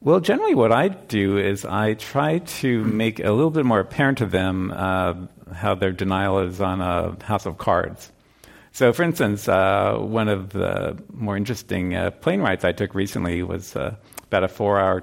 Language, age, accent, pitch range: English, 50-69, American, 95-115 Hz